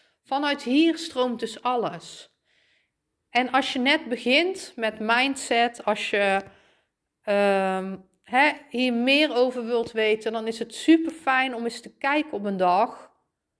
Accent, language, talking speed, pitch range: Dutch, Dutch, 145 wpm, 200-255 Hz